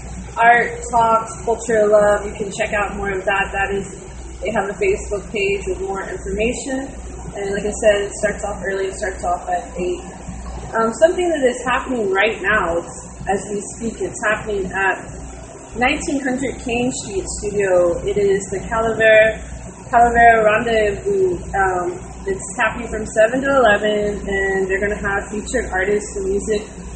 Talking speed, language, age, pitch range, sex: 165 wpm, English, 20-39, 200-245 Hz, female